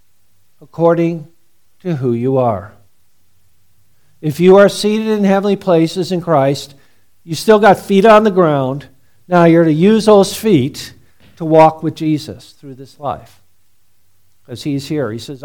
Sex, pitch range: male, 145-200 Hz